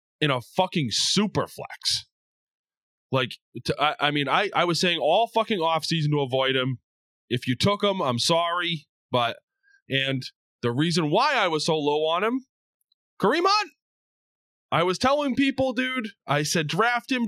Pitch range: 150-225 Hz